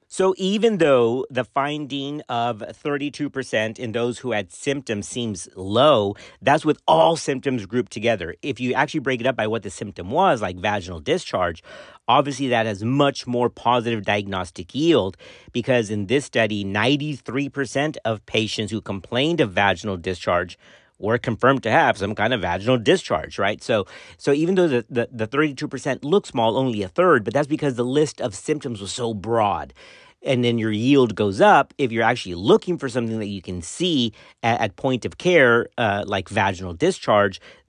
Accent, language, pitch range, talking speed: American, English, 105-145 Hz, 180 wpm